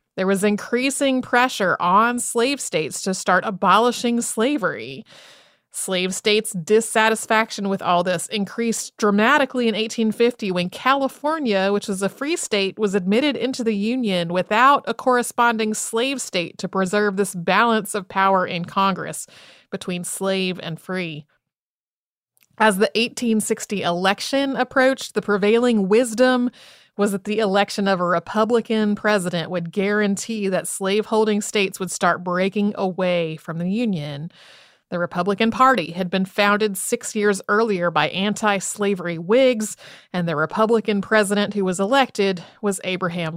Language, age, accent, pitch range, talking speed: English, 30-49, American, 185-230 Hz, 135 wpm